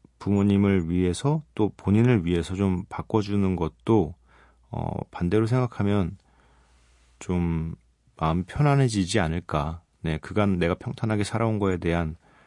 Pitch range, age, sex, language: 85-110 Hz, 40-59, male, Korean